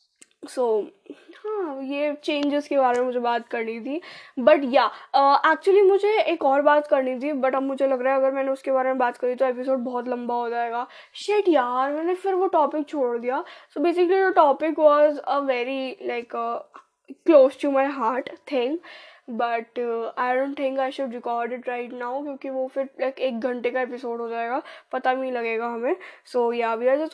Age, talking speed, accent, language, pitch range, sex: 10-29, 195 wpm, native, Hindi, 250-325 Hz, female